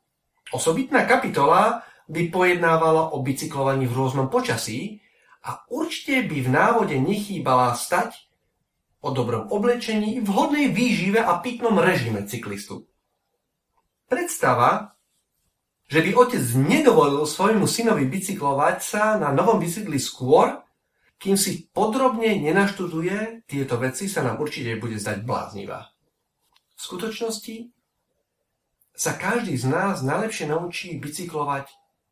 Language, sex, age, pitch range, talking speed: Slovak, male, 40-59, 130-215 Hz, 110 wpm